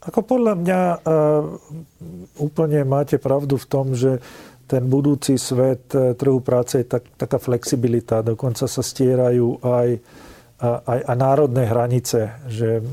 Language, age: Slovak, 40-59